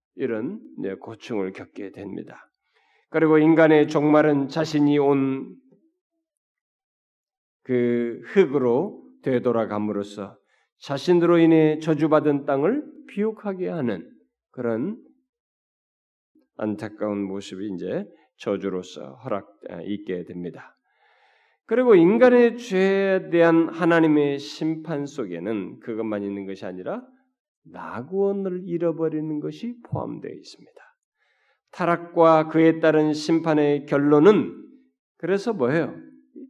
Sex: male